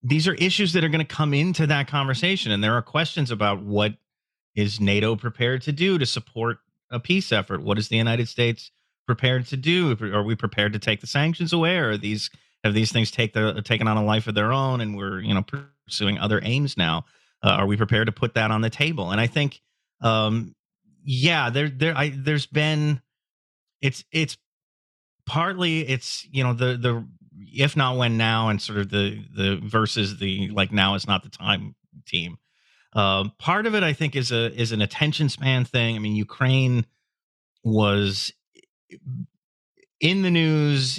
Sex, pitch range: male, 105-140 Hz